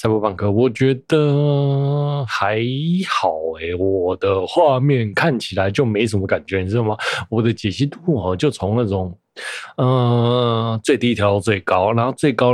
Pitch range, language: 105-130 Hz, Chinese